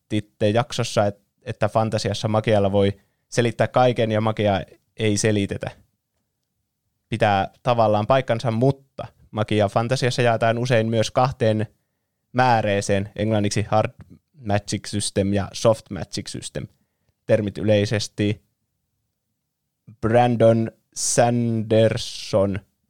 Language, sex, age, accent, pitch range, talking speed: Finnish, male, 20-39, native, 105-120 Hz, 90 wpm